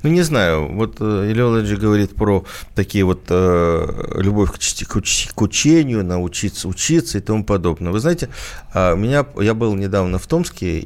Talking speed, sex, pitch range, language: 160 wpm, male, 90-115 Hz, Russian